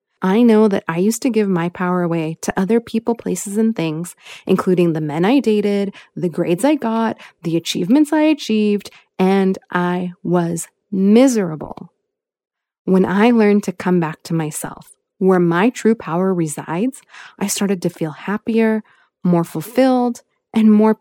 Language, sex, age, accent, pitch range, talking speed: English, female, 20-39, American, 175-235 Hz, 155 wpm